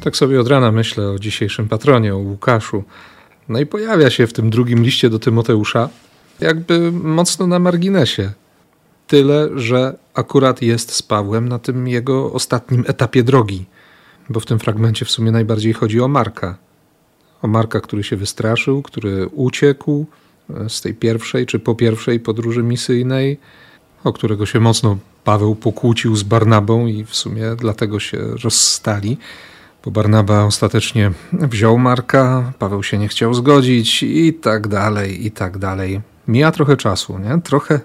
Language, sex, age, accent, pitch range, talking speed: Polish, male, 40-59, native, 110-130 Hz, 150 wpm